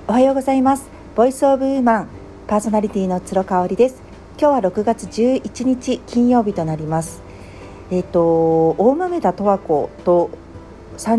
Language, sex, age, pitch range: Japanese, female, 50-69, 165-240 Hz